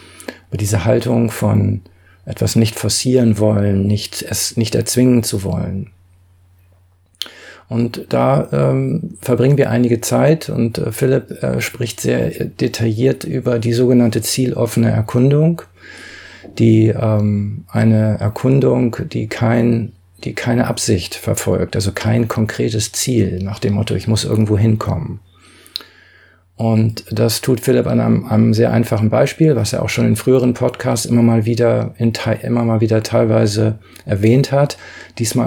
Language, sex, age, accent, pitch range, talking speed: German, male, 40-59, German, 105-120 Hz, 130 wpm